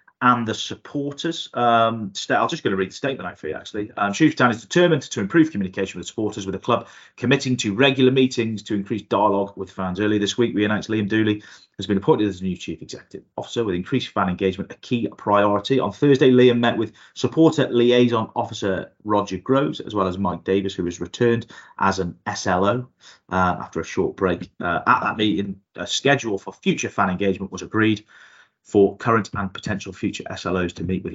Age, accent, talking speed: 30-49, British, 205 wpm